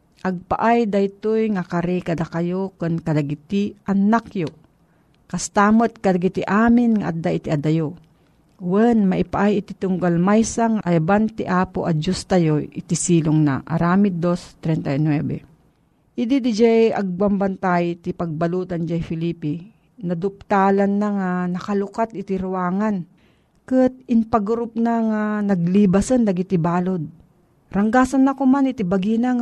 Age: 40-59